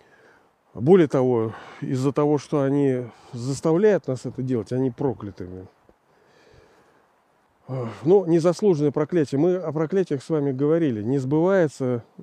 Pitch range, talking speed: 125-155 Hz, 115 wpm